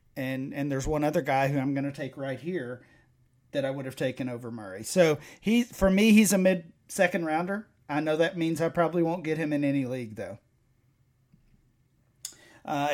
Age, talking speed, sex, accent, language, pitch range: 40-59, 195 wpm, male, American, English, 140-175 Hz